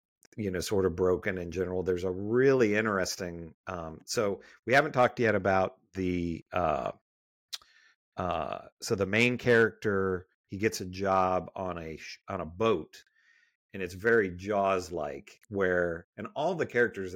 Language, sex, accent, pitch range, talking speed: English, male, American, 90-110 Hz, 155 wpm